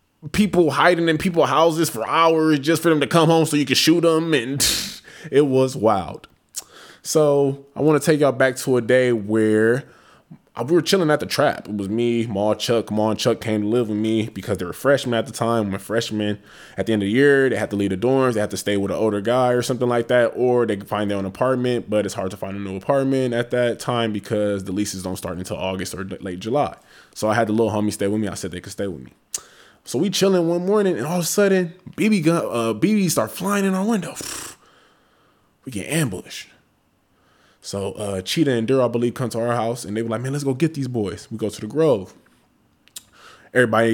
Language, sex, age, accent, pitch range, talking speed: English, male, 20-39, American, 105-140 Hz, 245 wpm